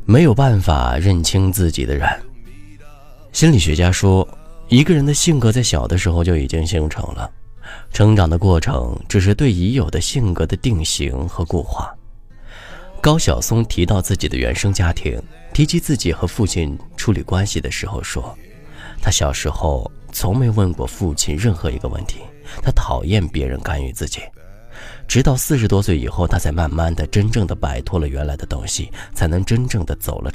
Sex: male